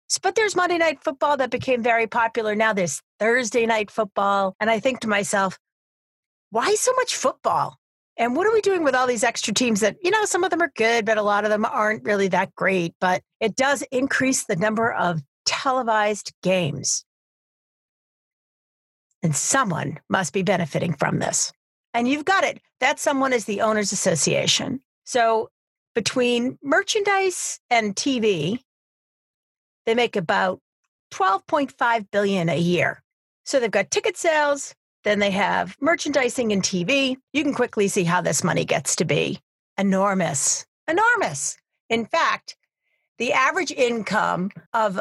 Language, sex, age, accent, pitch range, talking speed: English, female, 40-59, American, 200-270 Hz, 155 wpm